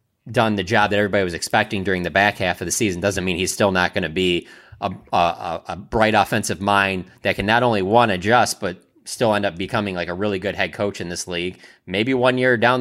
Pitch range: 90-115 Hz